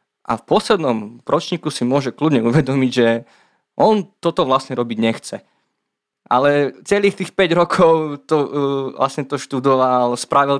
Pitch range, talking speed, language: 120-150 Hz, 140 wpm, Slovak